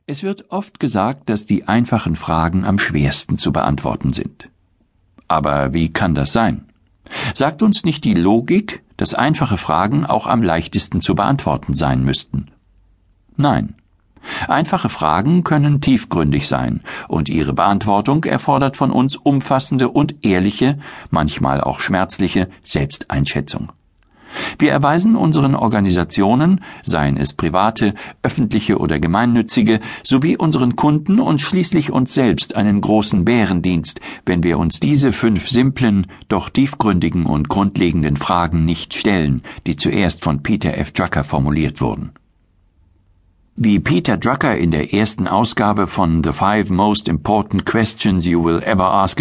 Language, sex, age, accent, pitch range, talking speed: German, male, 60-79, German, 80-125 Hz, 135 wpm